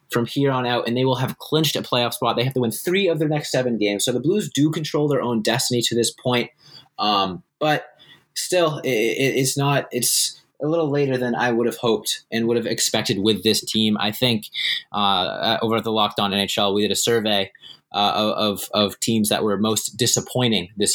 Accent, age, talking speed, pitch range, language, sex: American, 20-39, 220 wpm, 105-135 Hz, English, male